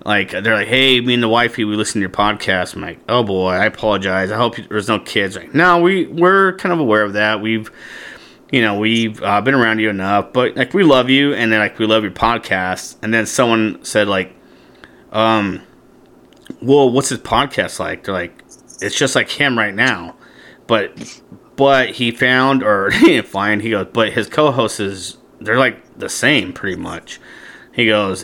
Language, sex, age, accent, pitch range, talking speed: English, male, 30-49, American, 105-140 Hz, 200 wpm